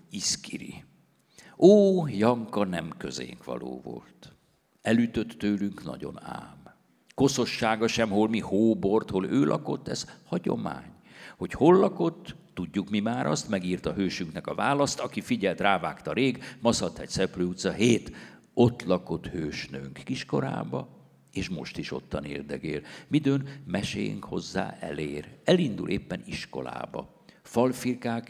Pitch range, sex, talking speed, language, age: 85-130 Hz, male, 125 wpm, Hungarian, 60-79